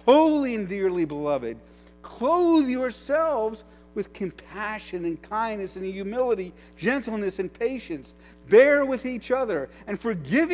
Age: 50-69